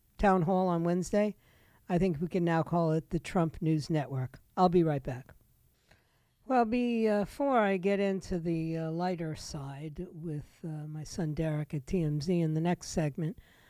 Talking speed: 170 wpm